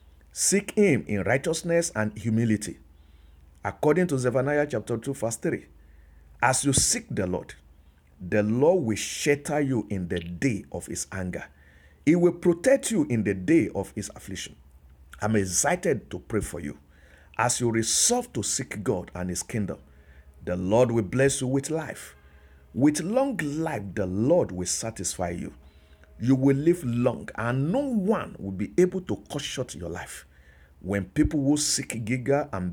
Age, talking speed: 50-69, 165 wpm